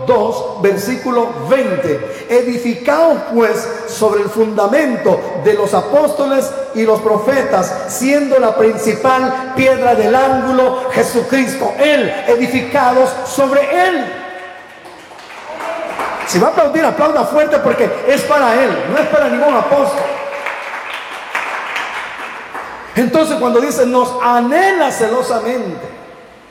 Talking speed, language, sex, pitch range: 105 wpm, Spanish, male, 220-265 Hz